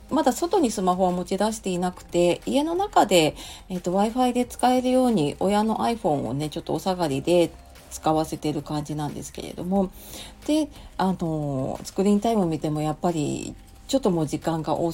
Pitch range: 155-220 Hz